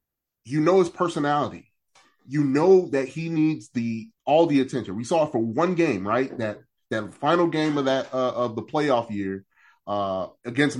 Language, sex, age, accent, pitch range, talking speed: English, male, 30-49, American, 105-150 Hz, 185 wpm